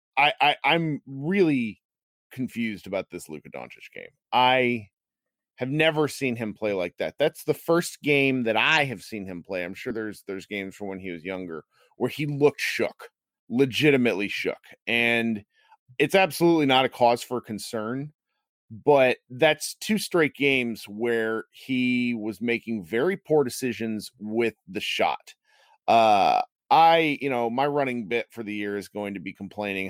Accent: American